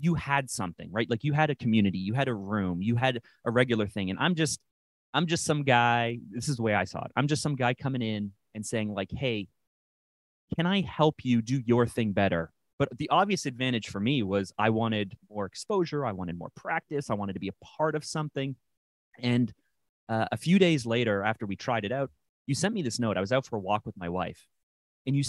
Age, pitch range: 30-49, 100-135 Hz